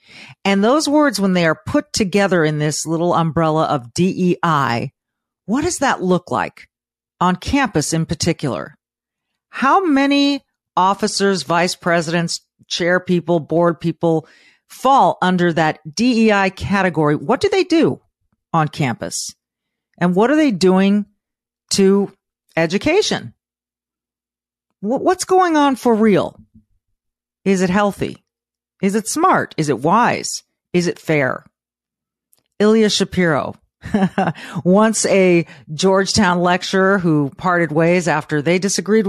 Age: 40-59